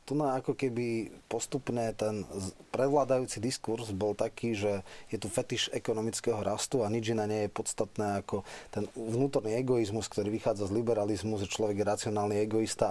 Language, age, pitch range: Slovak, 30-49, 100-115 Hz